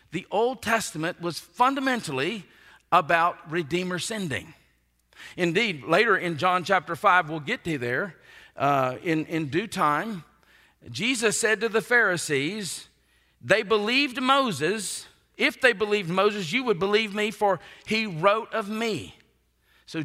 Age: 50-69